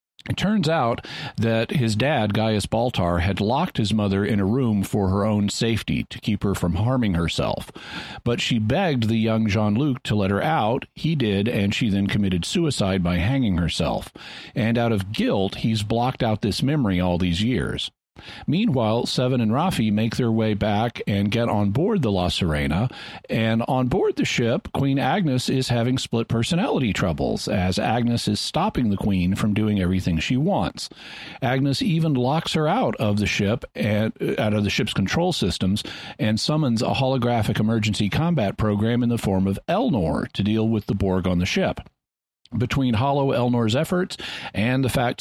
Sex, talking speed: male, 180 wpm